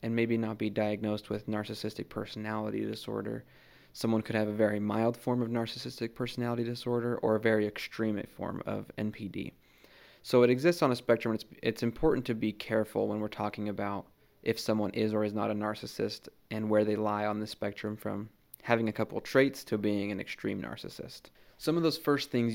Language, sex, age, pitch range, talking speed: English, male, 20-39, 105-120 Hz, 195 wpm